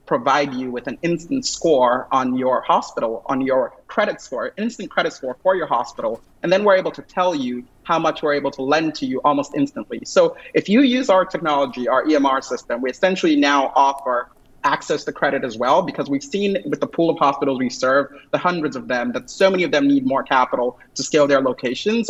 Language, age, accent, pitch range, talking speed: English, 30-49, American, 130-170 Hz, 215 wpm